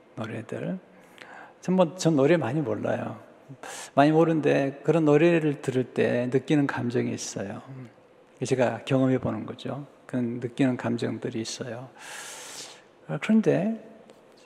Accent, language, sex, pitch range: native, Korean, male, 120-165 Hz